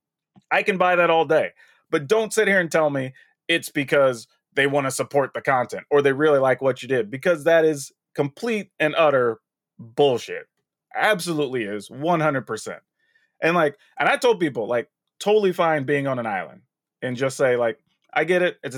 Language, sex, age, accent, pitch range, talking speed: English, male, 30-49, American, 145-200 Hz, 190 wpm